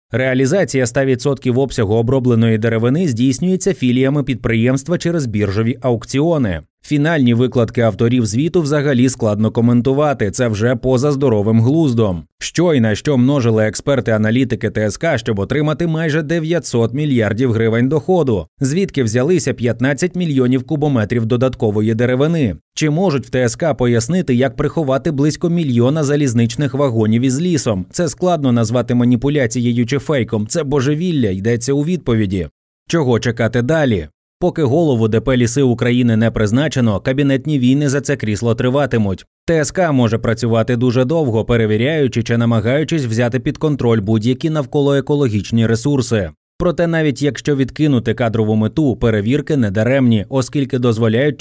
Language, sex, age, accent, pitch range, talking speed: Ukrainian, male, 20-39, native, 115-145 Hz, 130 wpm